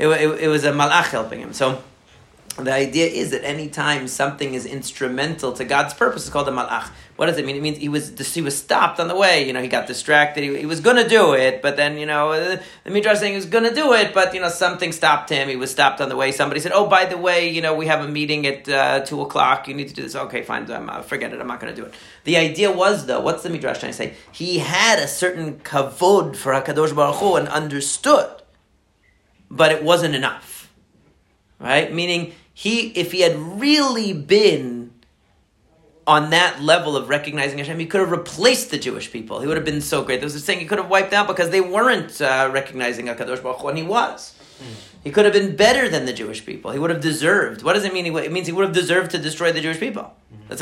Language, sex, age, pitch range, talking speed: English, male, 40-59, 140-180 Hz, 245 wpm